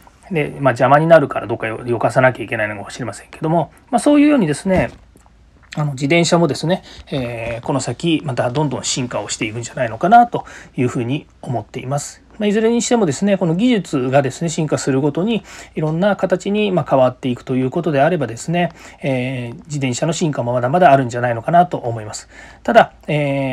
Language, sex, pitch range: Japanese, male, 125-175 Hz